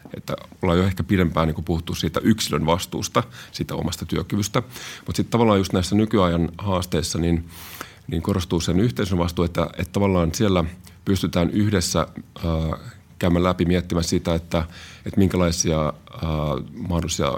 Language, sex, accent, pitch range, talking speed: Finnish, male, native, 85-95 Hz, 150 wpm